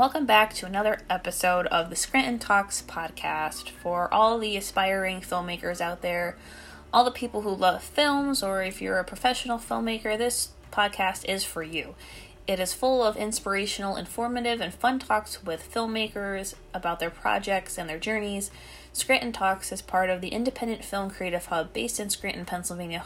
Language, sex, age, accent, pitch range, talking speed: English, female, 20-39, American, 170-210 Hz, 170 wpm